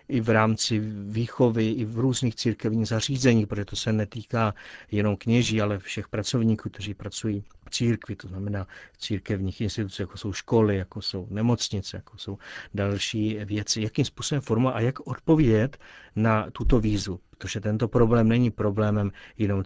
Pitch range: 100-115 Hz